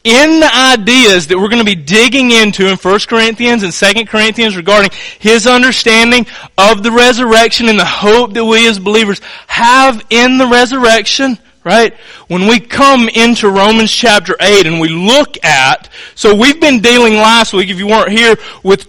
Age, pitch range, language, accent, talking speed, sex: 30-49, 170-235 Hz, English, American, 180 wpm, male